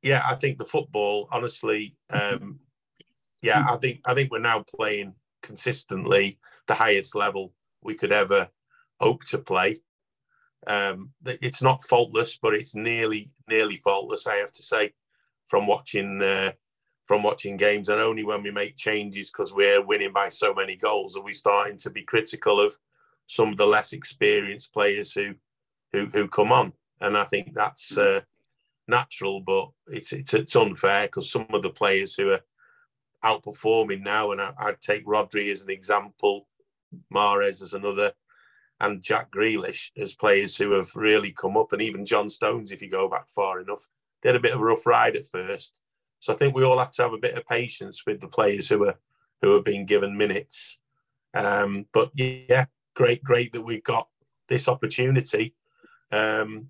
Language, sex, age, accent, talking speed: English, male, 40-59, British, 175 wpm